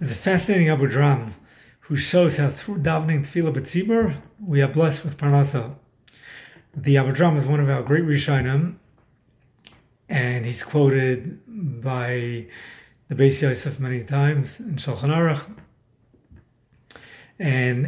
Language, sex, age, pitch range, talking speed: English, male, 30-49, 135-160 Hz, 130 wpm